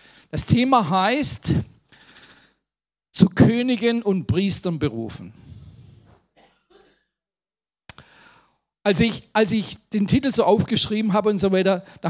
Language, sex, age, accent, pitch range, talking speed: German, male, 50-69, German, 165-215 Hz, 105 wpm